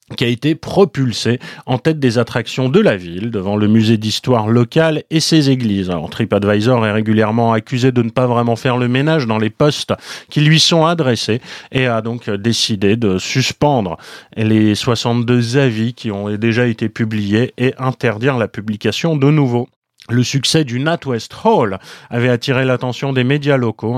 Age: 30-49